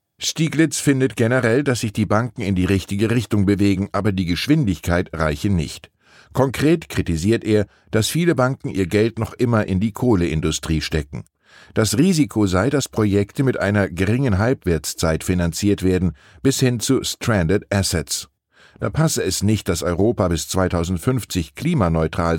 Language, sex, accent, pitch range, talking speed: German, male, German, 85-115 Hz, 150 wpm